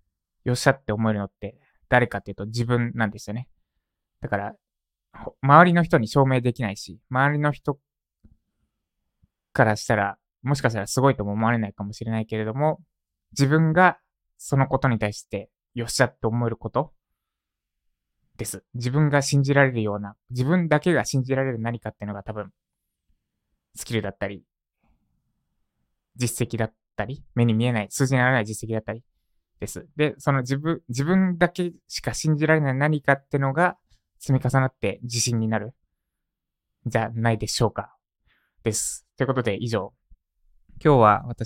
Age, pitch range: 20-39, 105-135 Hz